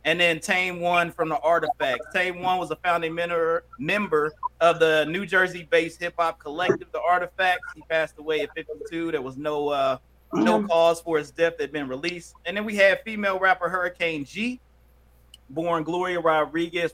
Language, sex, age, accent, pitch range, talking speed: English, male, 30-49, American, 140-180 Hz, 180 wpm